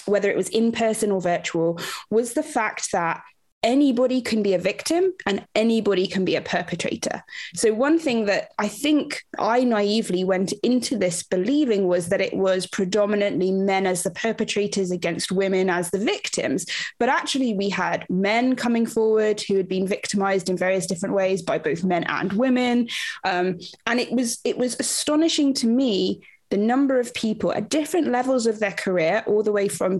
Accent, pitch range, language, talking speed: British, 190-245 Hz, English, 180 wpm